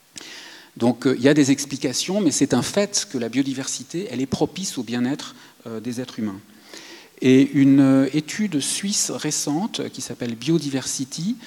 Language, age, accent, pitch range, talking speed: French, 40-59, French, 115-155 Hz, 175 wpm